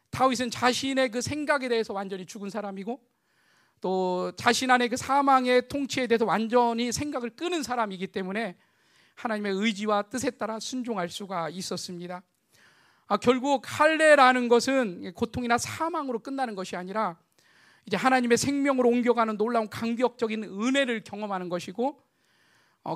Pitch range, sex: 195-250 Hz, male